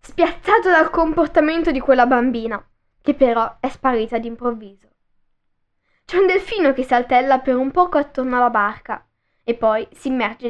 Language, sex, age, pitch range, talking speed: Italian, female, 10-29, 240-335 Hz, 150 wpm